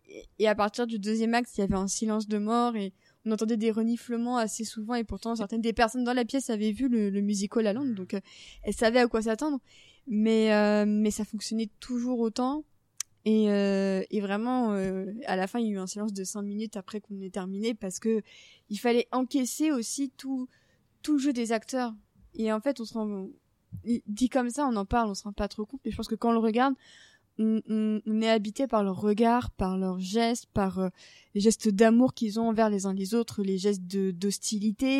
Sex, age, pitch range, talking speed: female, 20-39, 205-235 Hz, 225 wpm